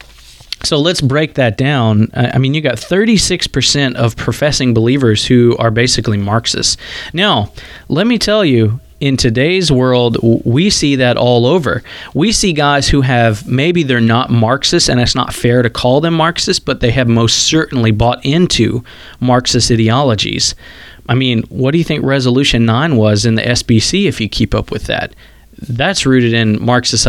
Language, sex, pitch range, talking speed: English, male, 115-140 Hz, 175 wpm